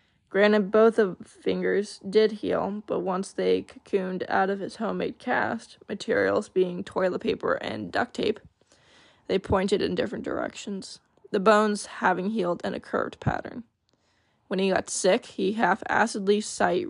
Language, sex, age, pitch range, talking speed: English, female, 20-39, 195-230 Hz, 150 wpm